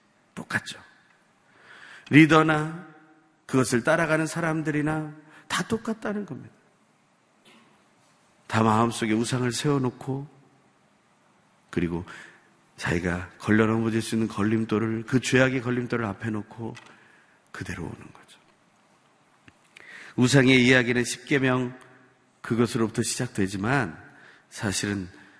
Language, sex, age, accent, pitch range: Korean, male, 40-59, native, 100-130 Hz